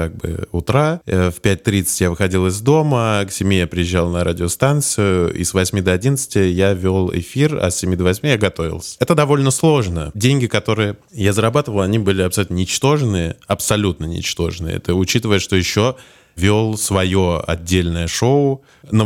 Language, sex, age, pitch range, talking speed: Russian, male, 20-39, 85-110 Hz, 165 wpm